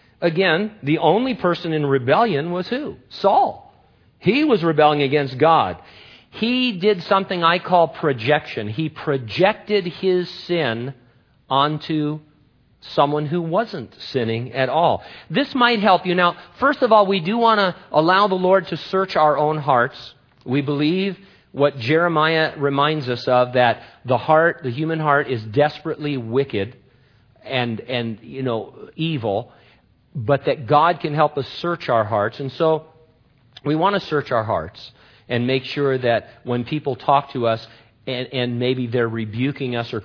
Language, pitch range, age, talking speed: English, 125-175 Hz, 50-69, 155 wpm